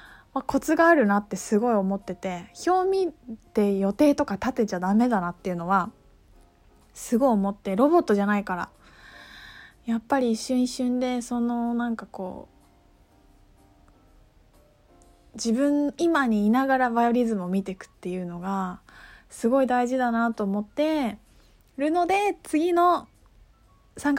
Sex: female